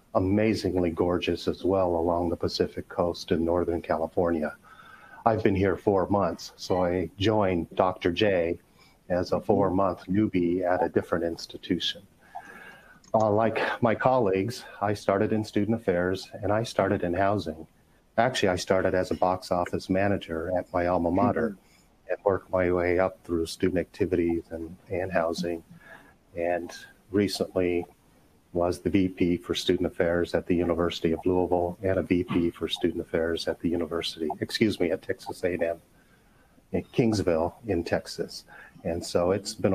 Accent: American